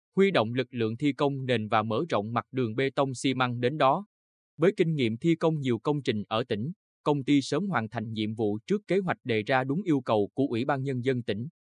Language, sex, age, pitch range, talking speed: Vietnamese, male, 20-39, 115-150 Hz, 250 wpm